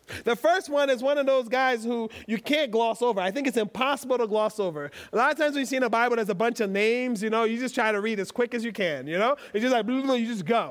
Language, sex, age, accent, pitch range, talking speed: English, male, 40-59, American, 225-290 Hz, 305 wpm